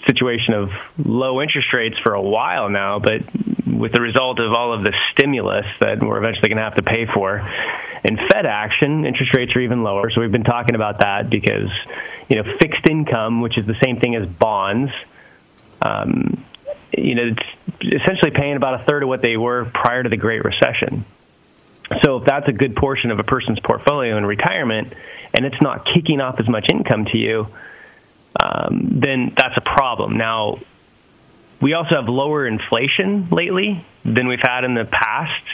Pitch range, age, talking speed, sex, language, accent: 115-135 Hz, 30-49, 185 wpm, male, English, American